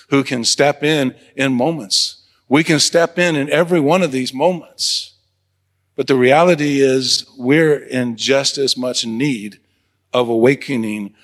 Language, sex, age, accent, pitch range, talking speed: English, male, 50-69, American, 115-150 Hz, 150 wpm